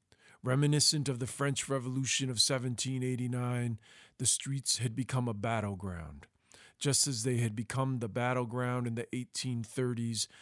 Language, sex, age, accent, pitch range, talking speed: English, male, 40-59, American, 120-140 Hz, 130 wpm